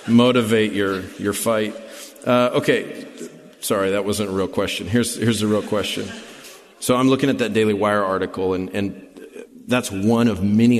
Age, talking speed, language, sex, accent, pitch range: 40-59, 170 wpm, English, male, American, 95-115 Hz